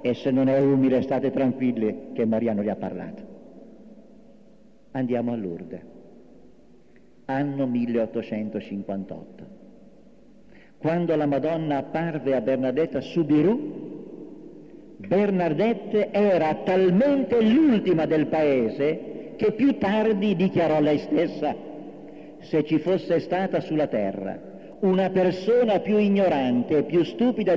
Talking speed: 105 wpm